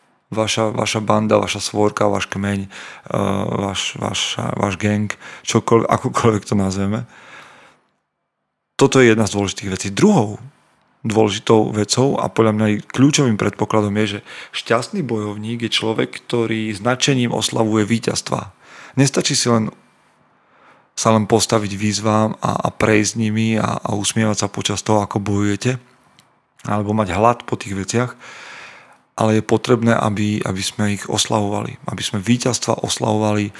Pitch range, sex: 105-115 Hz, male